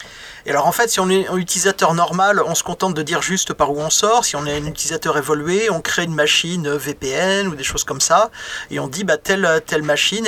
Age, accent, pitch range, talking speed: 30-49, French, 155-195 Hz, 250 wpm